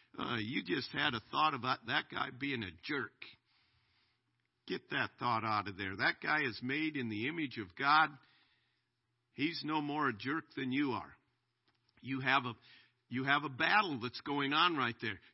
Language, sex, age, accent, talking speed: English, male, 50-69, American, 185 wpm